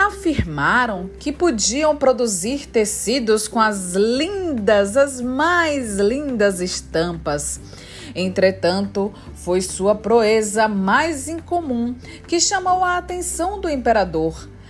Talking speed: 100 wpm